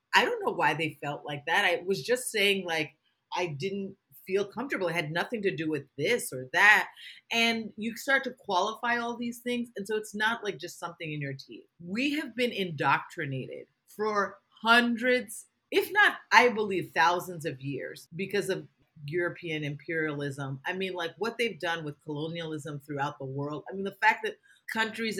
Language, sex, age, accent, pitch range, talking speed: English, female, 30-49, American, 165-245 Hz, 185 wpm